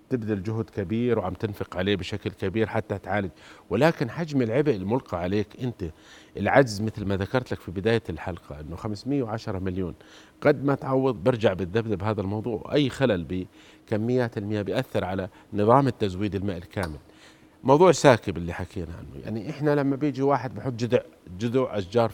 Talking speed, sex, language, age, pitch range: 155 wpm, male, Arabic, 50-69, 105-125 Hz